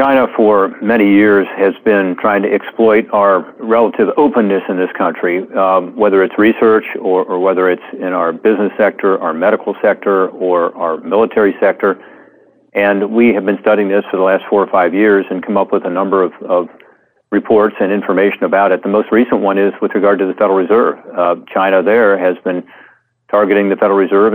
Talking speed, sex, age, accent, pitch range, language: 195 wpm, male, 40-59, American, 95-105 Hz, English